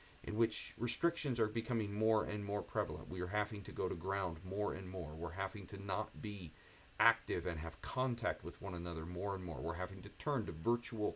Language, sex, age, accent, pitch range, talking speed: English, male, 50-69, American, 85-115 Hz, 215 wpm